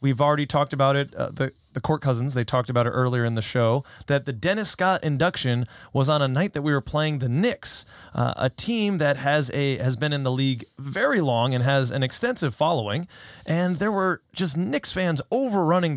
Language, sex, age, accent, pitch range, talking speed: English, male, 20-39, American, 125-170 Hz, 215 wpm